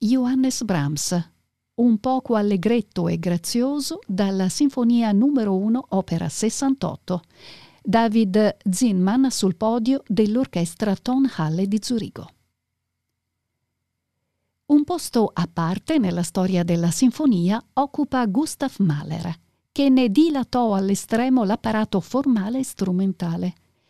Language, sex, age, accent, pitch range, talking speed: Italian, female, 50-69, native, 185-250 Hz, 100 wpm